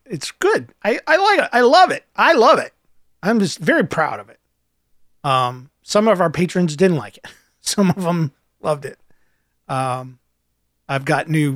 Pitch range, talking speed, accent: 130-185 Hz, 180 wpm, American